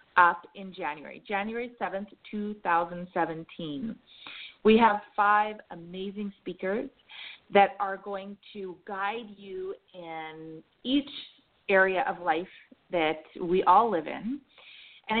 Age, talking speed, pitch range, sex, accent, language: 30-49, 110 wpm, 180-230 Hz, female, American, English